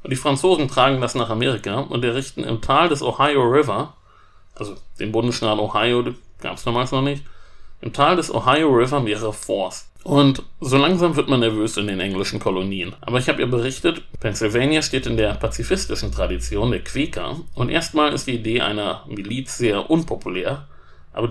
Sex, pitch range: male, 105-135 Hz